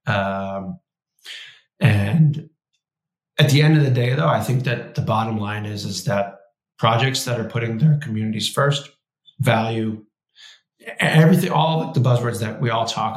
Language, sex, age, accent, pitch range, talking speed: English, male, 30-49, American, 105-140 Hz, 160 wpm